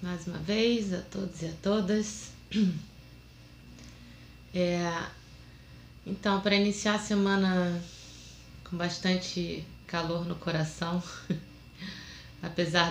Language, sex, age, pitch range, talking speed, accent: Portuguese, female, 20-39, 160-195 Hz, 90 wpm, Brazilian